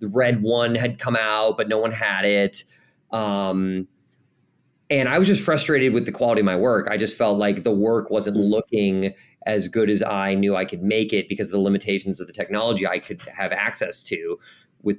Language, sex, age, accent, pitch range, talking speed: English, male, 30-49, American, 95-115 Hz, 210 wpm